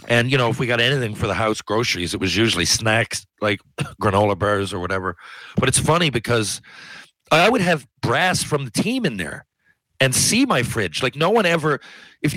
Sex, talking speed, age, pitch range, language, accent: male, 205 wpm, 40-59, 110-155 Hz, English, American